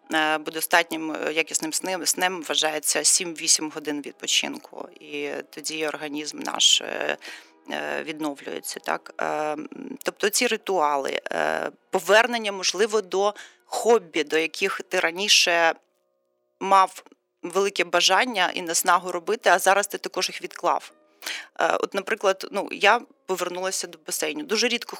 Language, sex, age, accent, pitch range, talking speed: Ukrainian, female, 30-49, native, 165-200 Hz, 115 wpm